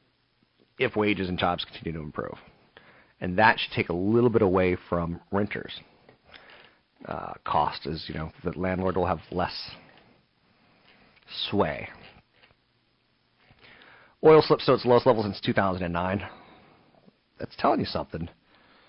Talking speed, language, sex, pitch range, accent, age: 125 wpm, English, male, 90-110 Hz, American, 40-59